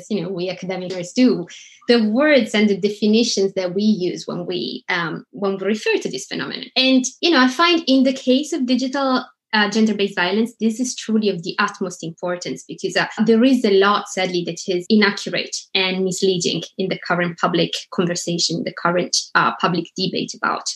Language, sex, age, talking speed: English, female, 20-39, 190 wpm